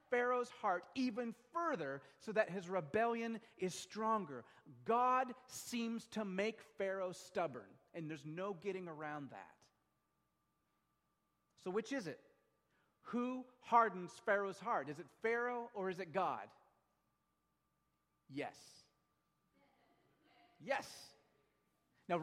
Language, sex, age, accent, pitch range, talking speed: English, male, 40-59, American, 160-230 Hz, 110 wpm